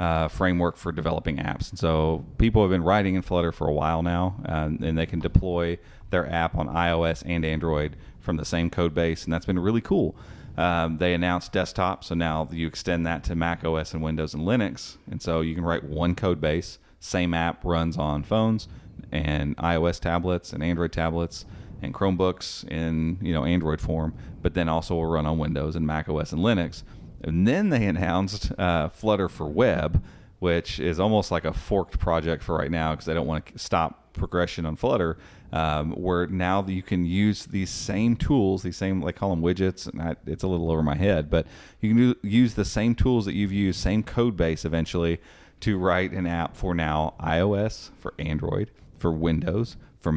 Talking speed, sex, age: 200 wpm, male, 40-59